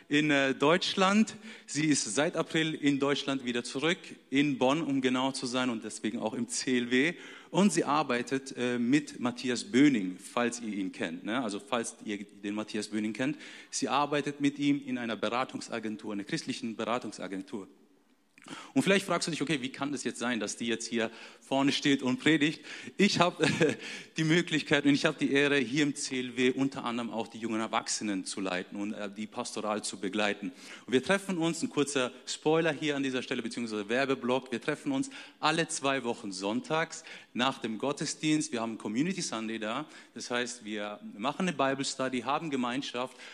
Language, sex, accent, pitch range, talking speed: German, male, German, 120-160 Hz, 180 wpm